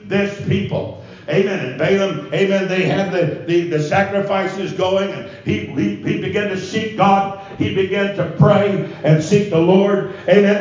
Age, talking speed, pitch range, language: 60-79, 170 wpm, 170-220 Hz, English